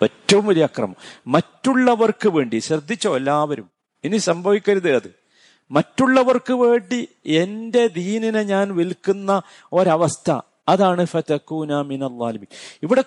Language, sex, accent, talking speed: Malayalam, male, native, 90 wpm